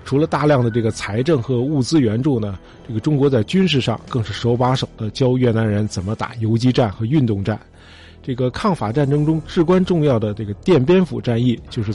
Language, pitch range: Chinese, 105-135 Hz